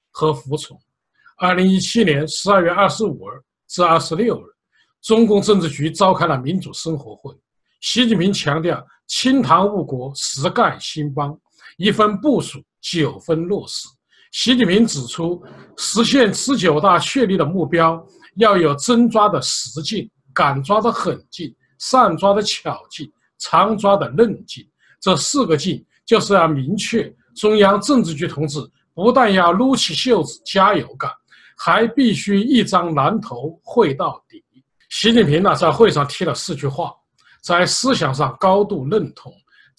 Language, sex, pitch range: Chinese, male, 155-220 Hz